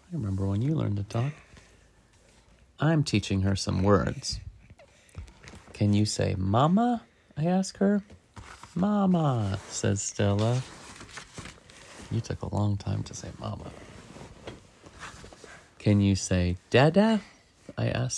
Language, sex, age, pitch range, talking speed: English, male, 30-49, 95-140 Hz, 115 wpm